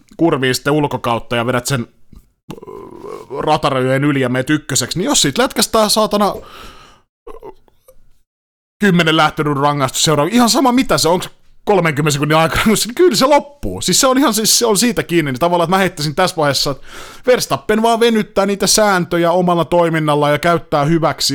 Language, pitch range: Finnish, 135-185 Hz